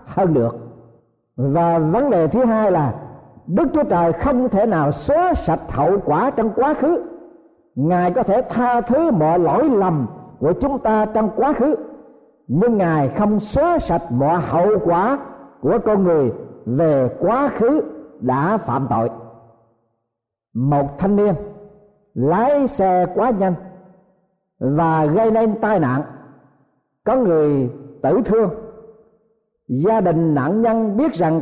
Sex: male